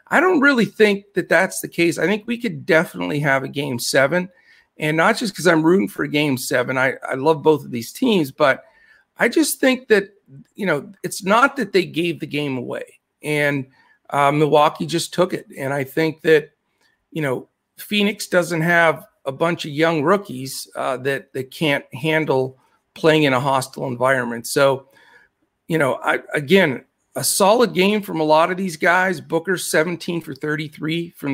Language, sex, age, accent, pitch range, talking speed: English, male, 50-69, American, 145-190 Hz, 190 wpm